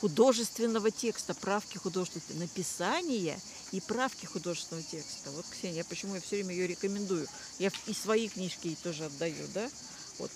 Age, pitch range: 40-59, 175-220 Hz